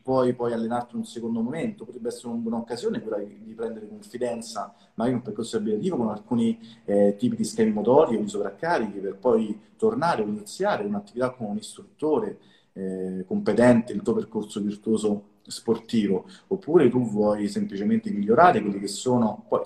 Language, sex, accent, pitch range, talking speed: Italian, male, native, 110-170 Hz, 155 wpm